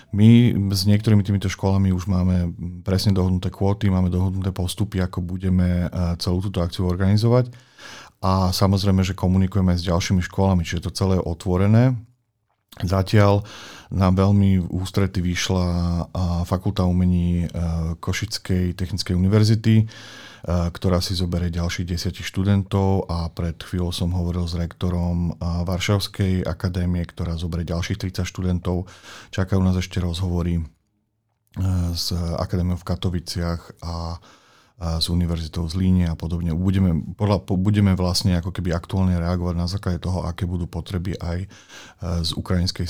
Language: Slovak